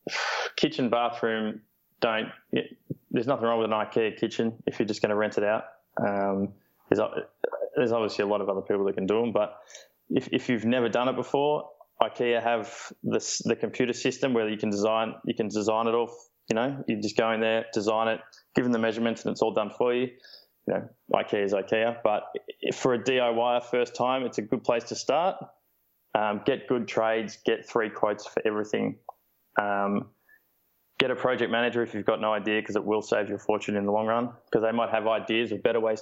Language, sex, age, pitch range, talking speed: English, male, 20-39, 110-120 Hz, 215 wpm